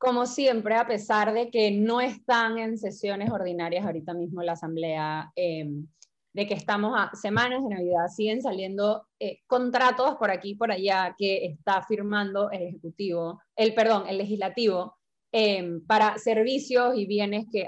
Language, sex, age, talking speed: Spanish, female, 20-39, 155 wpm